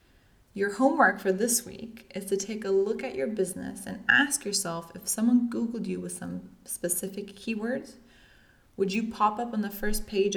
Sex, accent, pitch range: female, American, 180-215 Hz